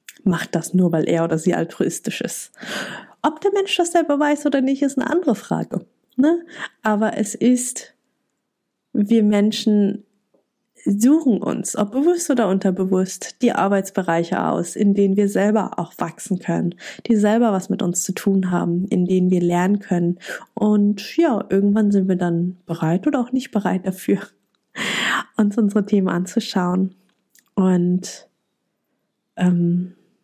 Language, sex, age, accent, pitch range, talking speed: German, female, 20-39, German, 185-220 Hz, 145 wpm